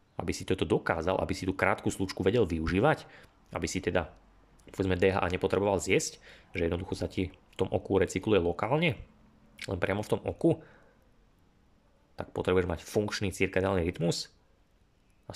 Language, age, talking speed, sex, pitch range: Slovak, 30-49, 150 wpm, male, 90-100 Hz